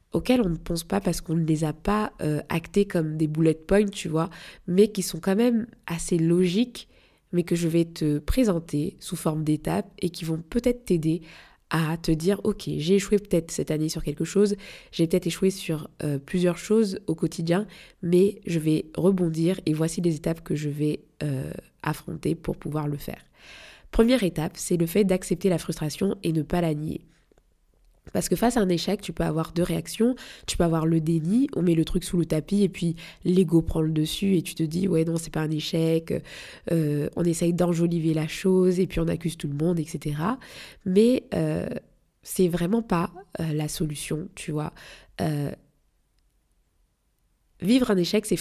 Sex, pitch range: female, 160-195 Hz